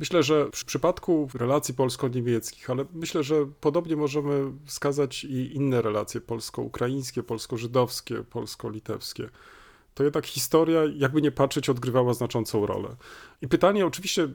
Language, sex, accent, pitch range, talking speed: Polish, male, native, 125-150 Hz, 125 wpm